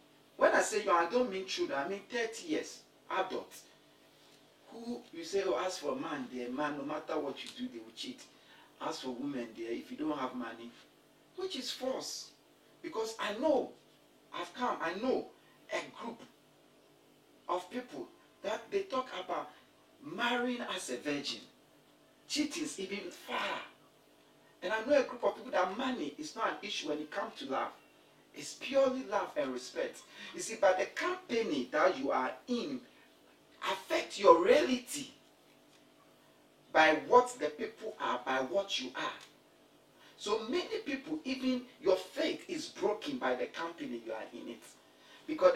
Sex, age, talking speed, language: male, 50-69, 165 wpm, English